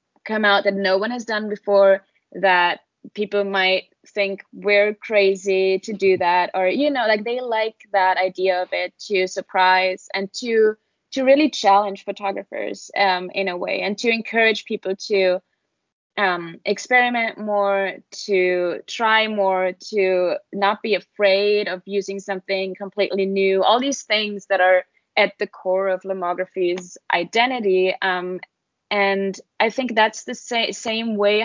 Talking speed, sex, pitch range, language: 150 wpm, female, 190-215 Hz, English